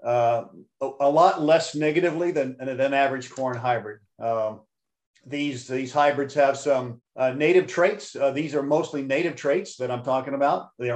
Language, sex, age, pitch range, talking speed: English, male, 50-69, 130-150 Hz, 165 wpm